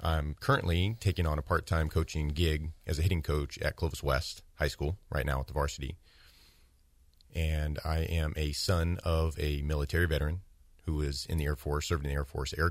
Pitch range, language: 75-85 Hz, English